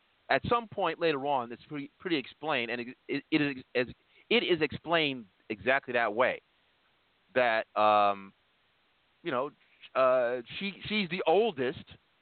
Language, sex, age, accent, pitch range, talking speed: English, male, 40-59, American, 125-170 Hz, 125 wpm